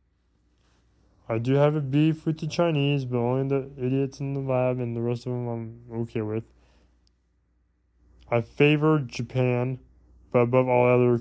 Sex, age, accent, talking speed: male, 20-39, American, 160 wpm